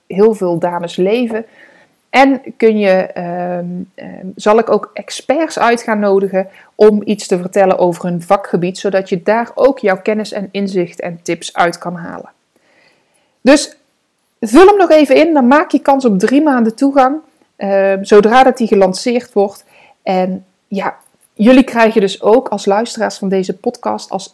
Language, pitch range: Dutch, 190-230 Hz